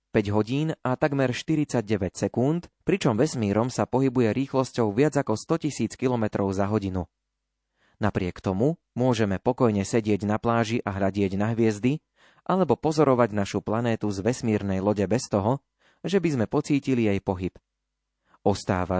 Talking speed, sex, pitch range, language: 140 wpm, male, 100-130 Hz, Slovak